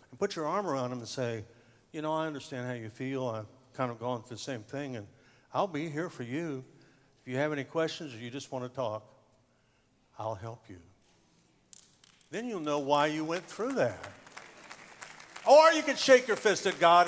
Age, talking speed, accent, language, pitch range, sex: 60-79, 205 wpm, American, English, 125-155 Hz, male